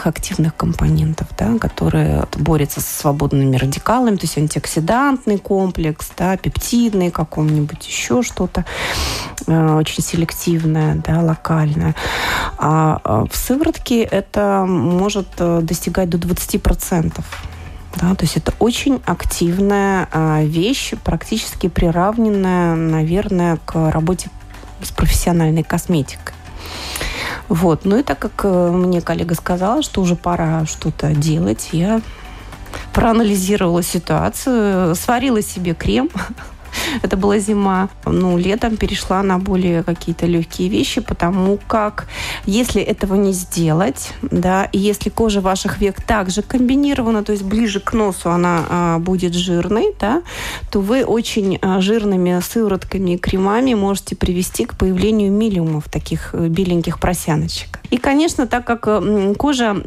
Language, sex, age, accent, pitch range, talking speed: Russian, female, 30-49, native, 160-205 Hz, 115 wpm